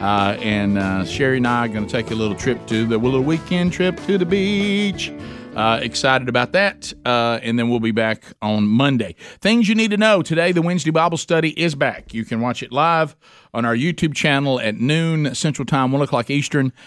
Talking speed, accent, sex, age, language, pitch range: 215 wpm, American, male, 40-59, English, 110-145 Hz